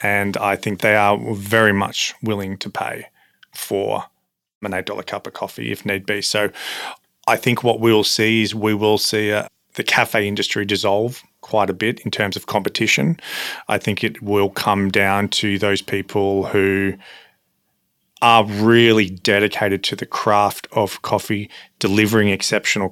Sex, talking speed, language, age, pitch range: male, 160 wpm, English, 30-49, 100-110 Hz